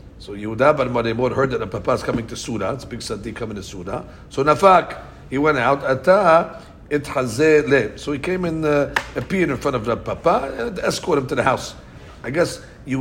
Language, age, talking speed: English, 60-79, 195 wpm